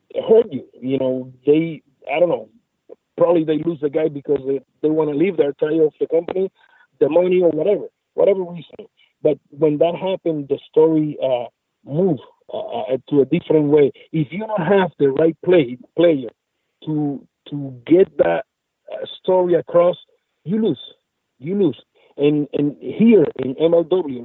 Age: 50-69